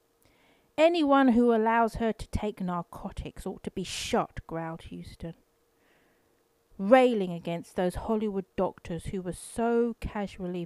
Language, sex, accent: English, female, British